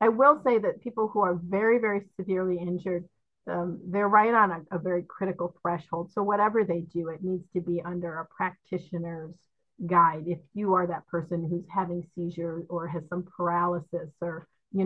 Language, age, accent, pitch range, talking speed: English, 40-59, American, 170-200 Hz, 185 wpm